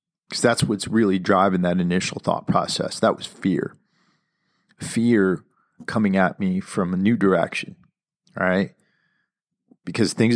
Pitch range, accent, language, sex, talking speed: 100-165 Hz, American, English, male, 135 wpm